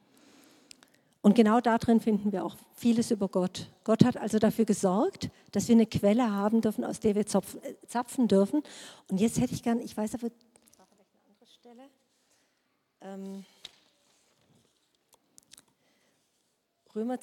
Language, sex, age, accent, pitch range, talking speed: German, female, 50-69, German, 200-260 Hz, 140 wpm